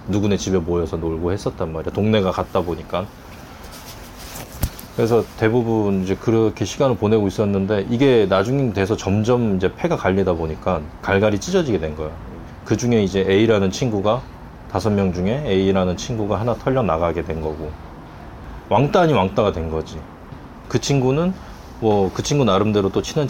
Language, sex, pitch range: Korean, male, 90-115 Hz